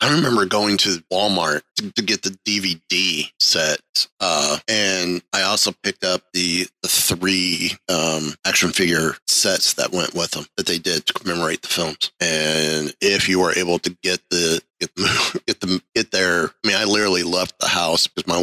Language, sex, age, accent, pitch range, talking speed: English, male, 30-49, American, 90-100 Hz, 190 wpm